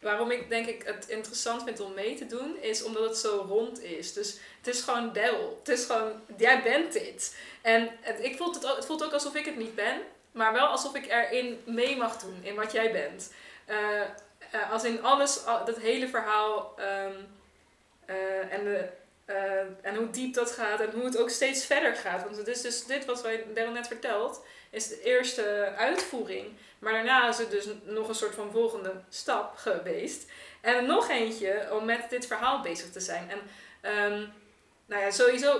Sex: female